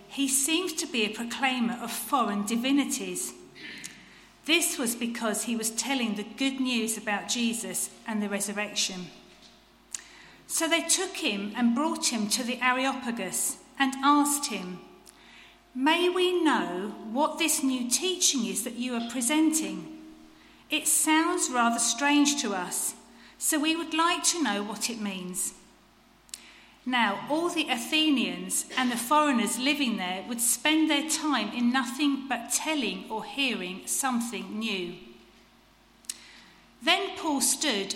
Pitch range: 230-295 Hz